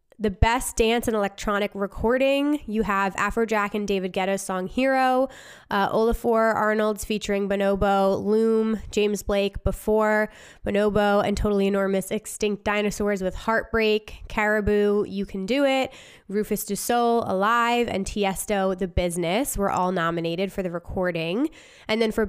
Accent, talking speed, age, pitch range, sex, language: American, 140 wpm, 20-39, 195-230 Hz, female, English